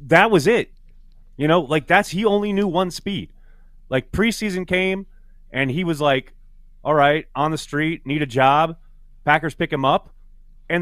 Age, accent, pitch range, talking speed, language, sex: 30-49, American, 135-195 Hz, 175 wpm, English, male